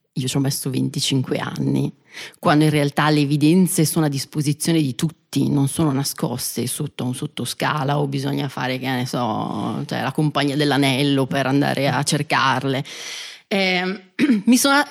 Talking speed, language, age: 155 wpm, Italian, 30-49